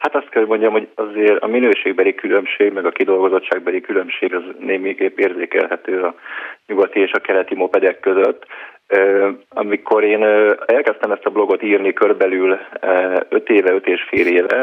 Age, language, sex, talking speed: 20-39, Hungarian, male, 155 wpm